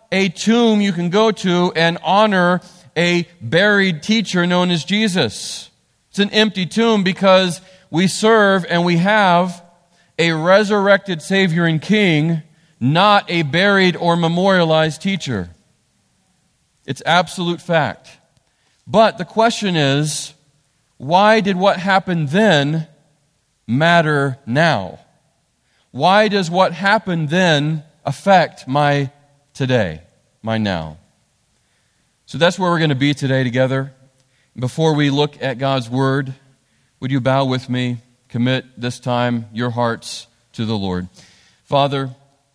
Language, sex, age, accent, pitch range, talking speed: English, male, 40-59, American, 120-175 Hz, 125 wpm